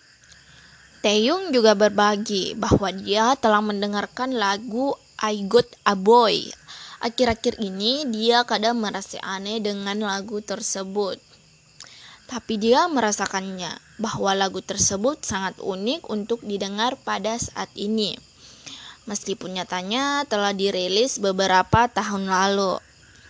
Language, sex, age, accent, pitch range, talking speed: Indonesian, female, 20-39, native, 200-240 Hz, 105 wpm